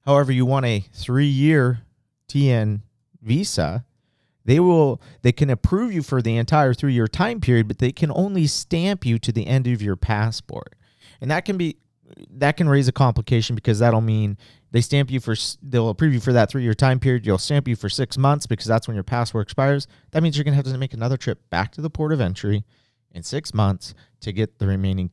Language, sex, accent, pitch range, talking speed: English, male, American, 100-135 Hz, 215 wpm